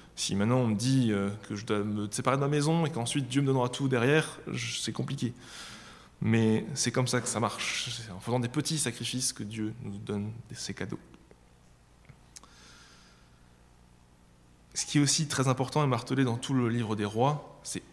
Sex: male